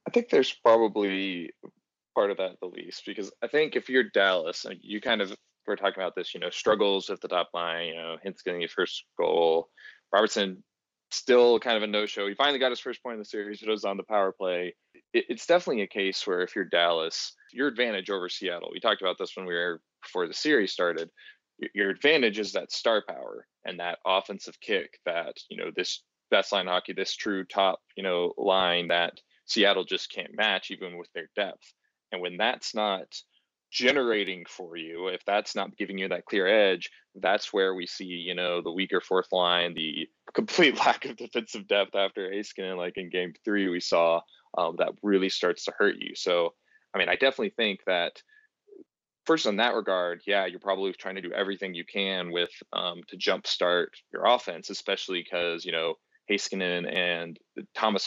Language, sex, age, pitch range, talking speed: English, male, 20-39, 90-135 Hz, 200 wpm